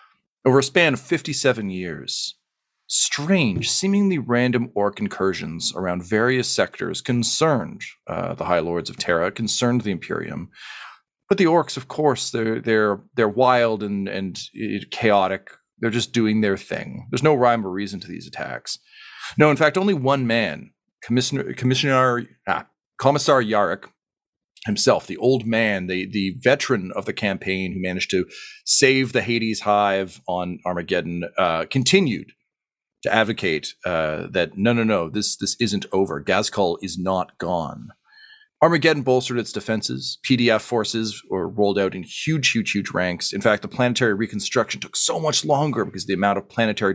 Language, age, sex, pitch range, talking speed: English, 40-59, male, 95-130 Hz, 160 wpm